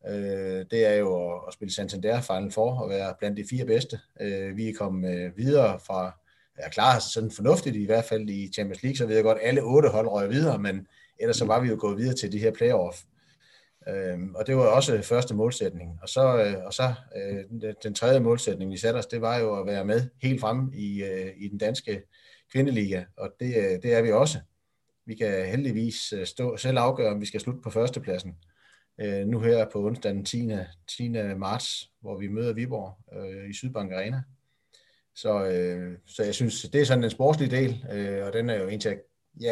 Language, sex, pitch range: Danish, male, 95-120 Hz